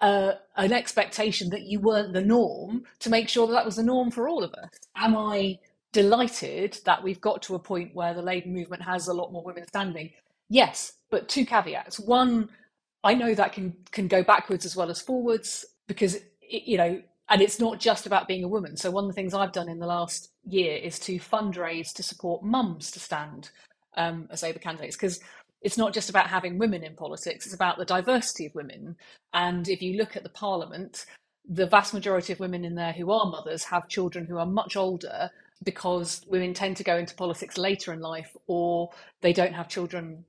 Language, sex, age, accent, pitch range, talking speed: English, female, 30-49, British, 175-205 Hz, 215 wpm